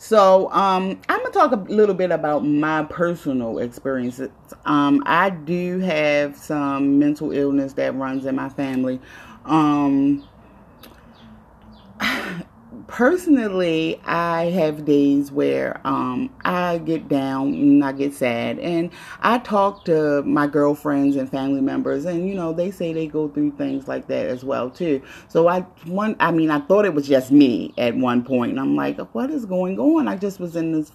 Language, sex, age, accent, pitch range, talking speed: English, female, 30-49, American, 140-175 Hz, 170 wpm